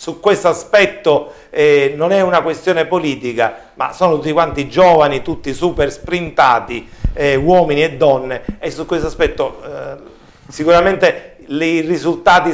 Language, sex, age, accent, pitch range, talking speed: Italian, male, 40-59, native, 135-195 Hz, 140 wpm